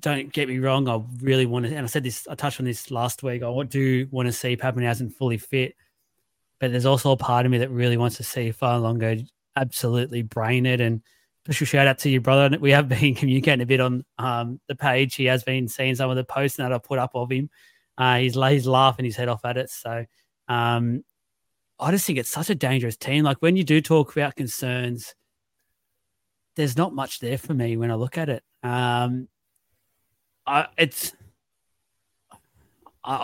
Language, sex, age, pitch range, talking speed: English, male, 20-39, 125-145 Hz, 205 wpm